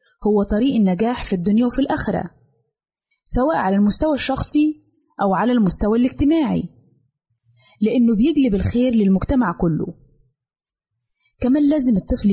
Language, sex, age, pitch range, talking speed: Arabic, female, 20-39, 170-245 Hz, 110 wpm